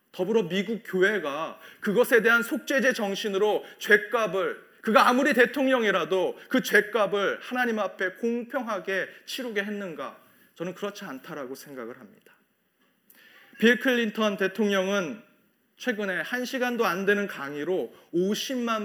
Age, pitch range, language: 30-49, 165-230 Hz, Korean